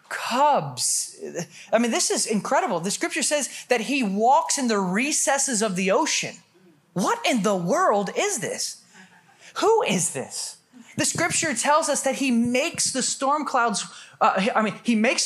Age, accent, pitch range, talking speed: 20-39, American, 185-265 Hz, 165 wpm